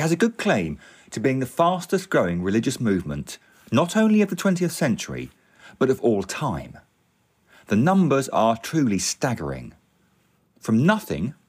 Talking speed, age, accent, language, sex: 145 wpm, 40-59, British, English, male